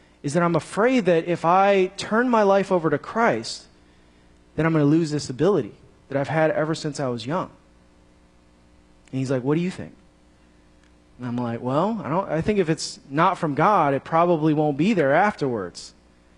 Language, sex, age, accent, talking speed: English, male, 30-49, American, 200 wpm